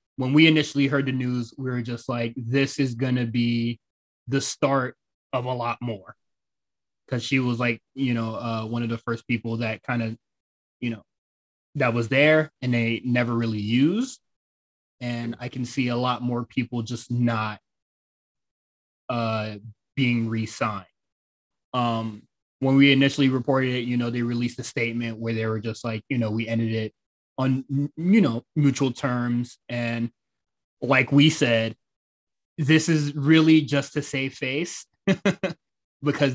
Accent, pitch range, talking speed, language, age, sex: American, 115-140 Hz, 160 wpm, English, 20-39, male